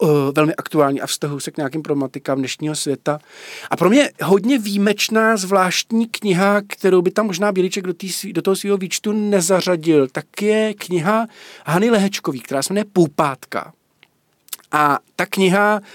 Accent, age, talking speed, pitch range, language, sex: native, 40-59, 155 wpm, 160-195 Hz, Czech, male